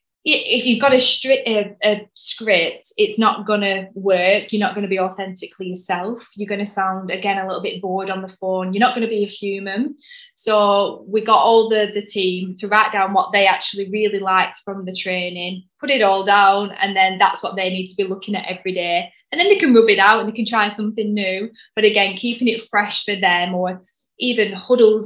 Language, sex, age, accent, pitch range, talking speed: English, female, 10-29, British, 190-220 Hz, 230 wpm